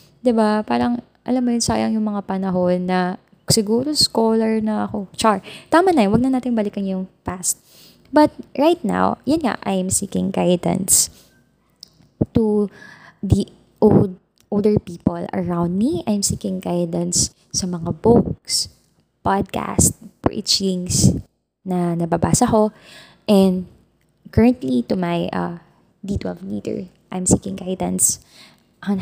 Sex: female